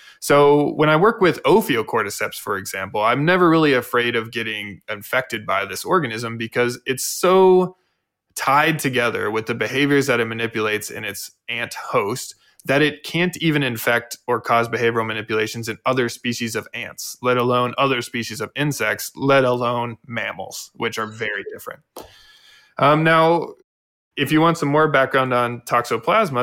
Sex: male